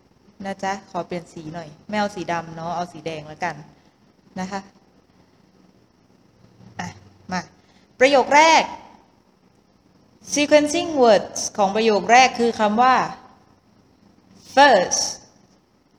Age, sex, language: 20-39, female, English